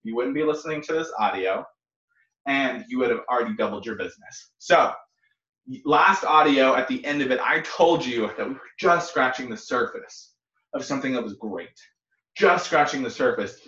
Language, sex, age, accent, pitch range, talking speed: English, male, 20-39, American, 130-215 Hz, 185 wpm